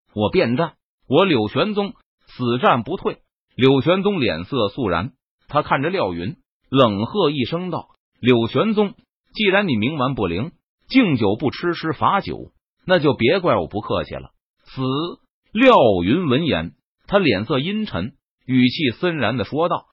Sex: male